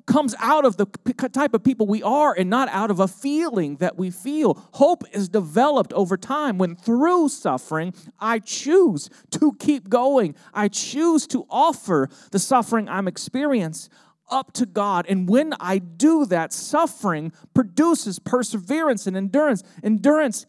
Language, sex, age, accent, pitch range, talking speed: English, male, 40-59, American, 160-260 Hz, 155 wpm